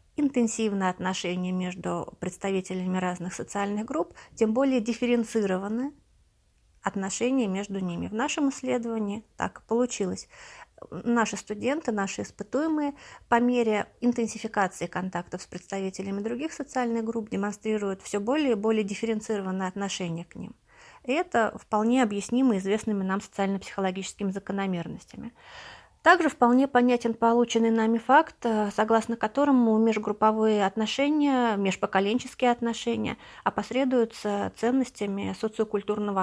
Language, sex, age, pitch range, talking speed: Russian, female, 30-49, 195-240 Hz, 105 wpm